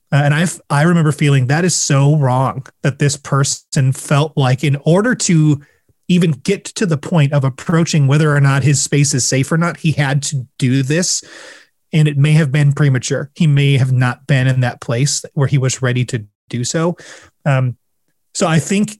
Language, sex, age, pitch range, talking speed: English, male, 30-49, 130-155 Hz, 200 wpm